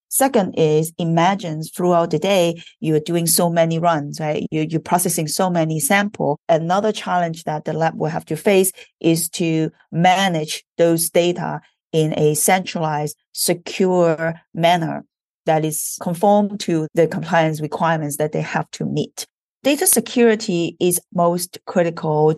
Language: English